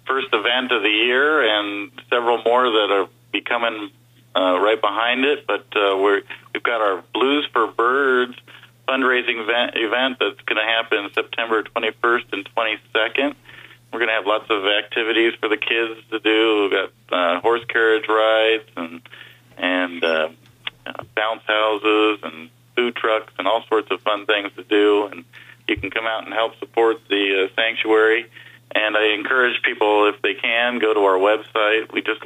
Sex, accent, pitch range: male, American, 100-120 Hz